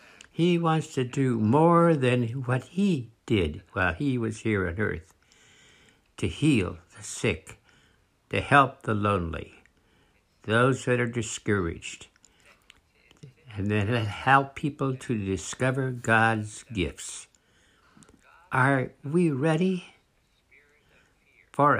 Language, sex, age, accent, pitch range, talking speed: English, male, 60-79, American, 100-140 Hz, 105 wpm